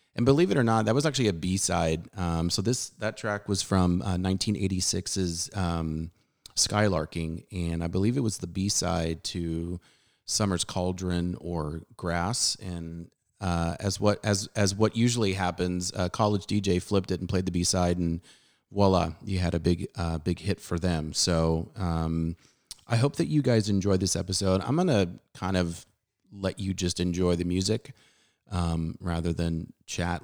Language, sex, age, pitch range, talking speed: English, male, 30-49, 85-100 Hz, 175 wpm